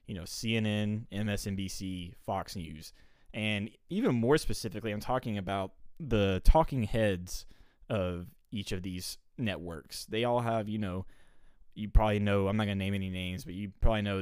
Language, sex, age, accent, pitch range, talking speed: English, male, 20-39, American, 90-110 Hz, 170 wpm